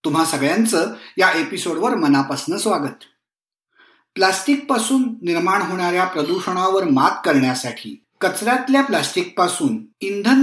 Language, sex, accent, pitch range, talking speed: Marathi, male, native, 175-245 Hz, 90 wpm